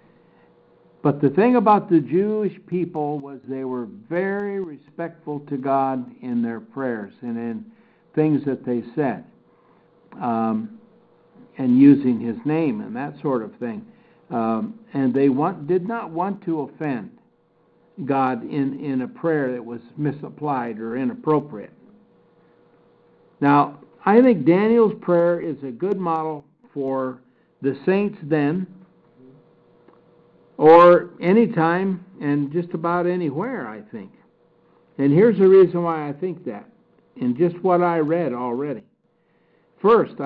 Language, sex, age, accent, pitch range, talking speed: English, male, 60-79, American, 135-190 Hz, 130 wpm